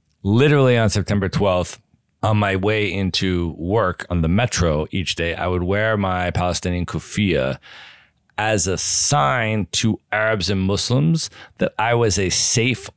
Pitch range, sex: 85-105 Hz, male